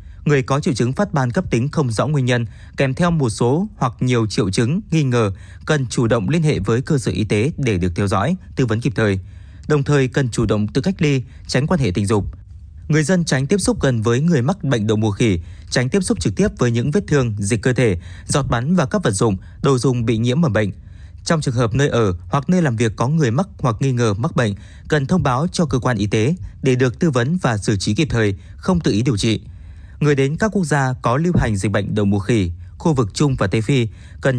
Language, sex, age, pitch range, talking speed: Vietnamese, male, 20-39, 105-150 Hz, 260 wpm